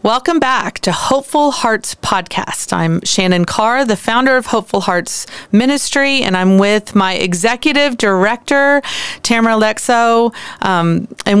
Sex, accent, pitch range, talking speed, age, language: female, American, 180-225 Hz, 130 wpm, 40-59, English